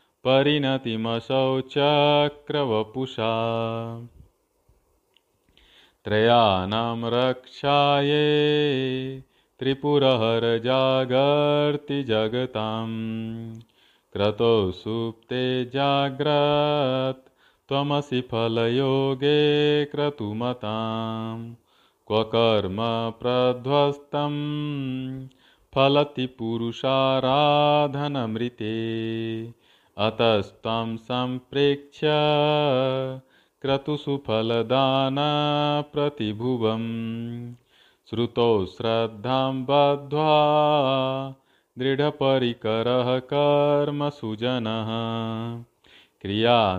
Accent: native